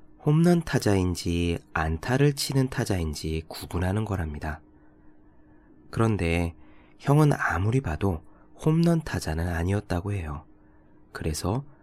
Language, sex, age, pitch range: Korean, male, 20-39, 80-125 Hz